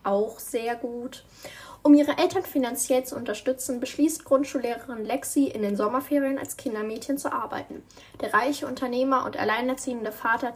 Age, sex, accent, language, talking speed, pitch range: 10-29, female, German, German, 140 wpm, 215-275 Hz